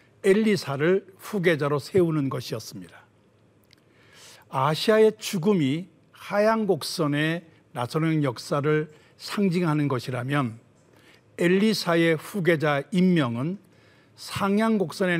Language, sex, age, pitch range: Korean, male, 60-79, 135-180 Hz